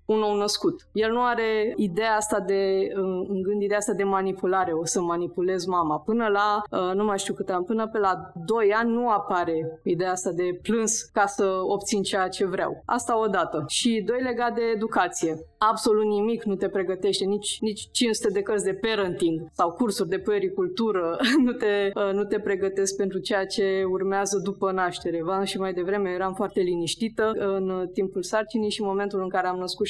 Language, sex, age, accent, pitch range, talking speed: Romanian, female, 20-39, native, 185-225 Hz, 185 wpm